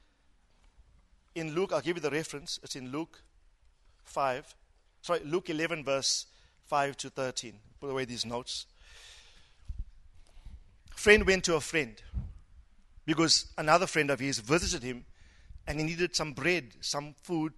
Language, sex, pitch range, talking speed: English, male, 130-190 Hz, 140 wpm